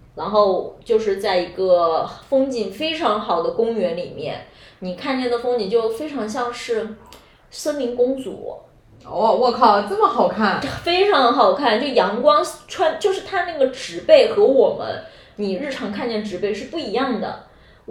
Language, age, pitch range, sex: Chinese, 20-39, 200-315 Hz, female